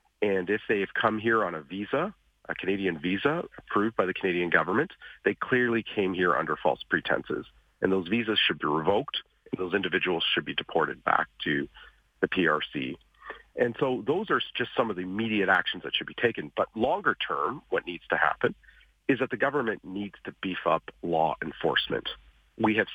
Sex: male